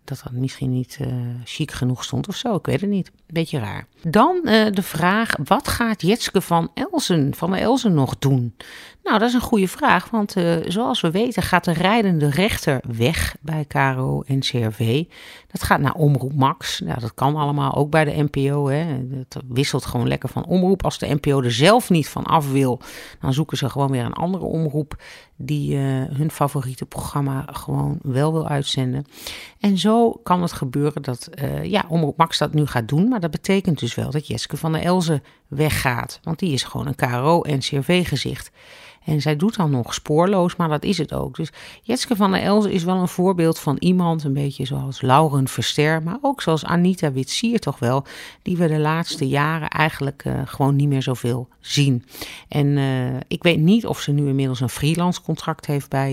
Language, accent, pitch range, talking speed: Dutch, Dutch, 135-175 Hz, 200 wpm